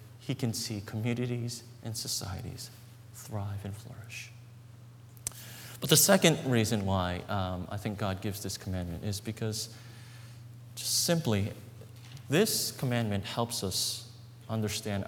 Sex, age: male, 30-49